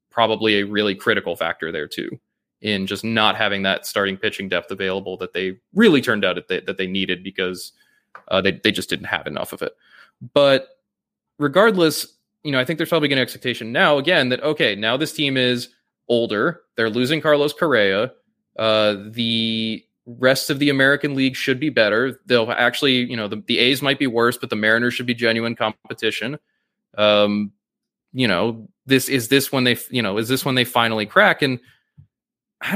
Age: 20-39